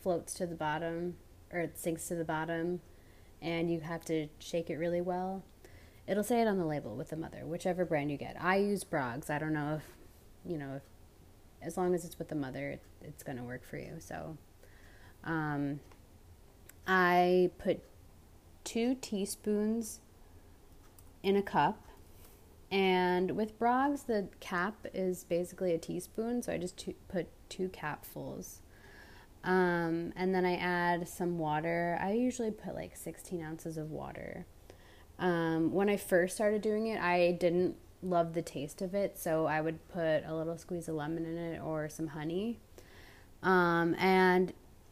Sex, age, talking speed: female, 20-39, 165 wpm